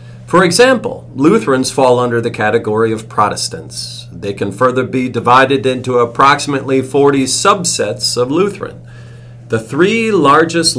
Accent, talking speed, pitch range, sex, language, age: American, 130 wpm, 110-135 Hz, male, English, 40-59